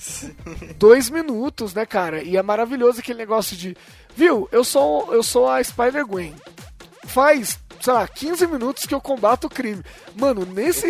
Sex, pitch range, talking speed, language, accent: male, 180-255 Hz, 160 wpm, Portuguese, Brazilian